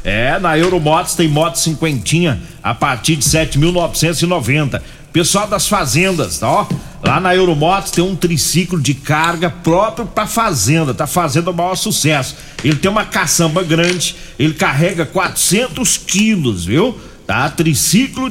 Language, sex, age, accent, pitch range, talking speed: Portuguese, male, 50-69, Brazilian, 140-185 Hz, 135 wpm